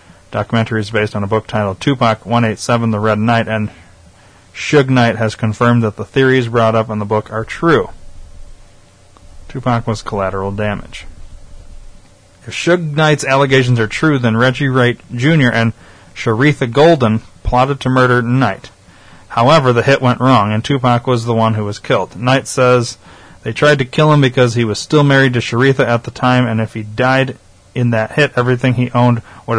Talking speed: 180 wpm